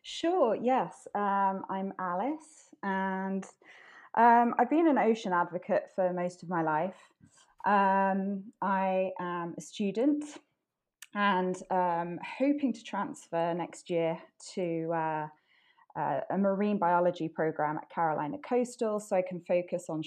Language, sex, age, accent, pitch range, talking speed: English, female, 20-39, British, 170-210 Hz, 130 wpm